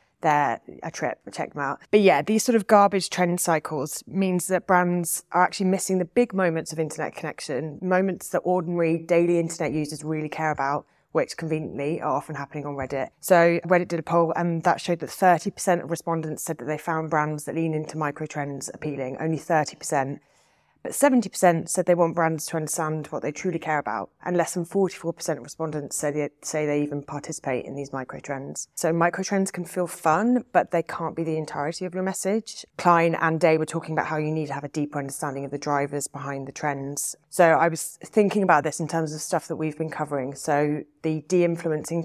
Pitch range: 155-180 Hz